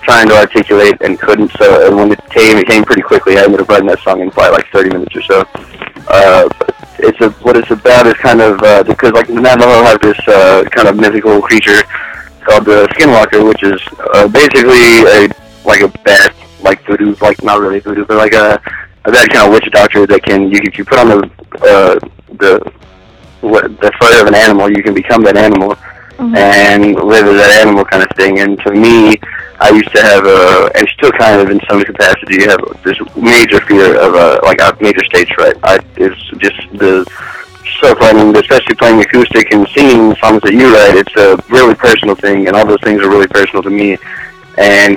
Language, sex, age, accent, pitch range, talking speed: English, male, 20-39, American, 100-115 Hz, 215 wpm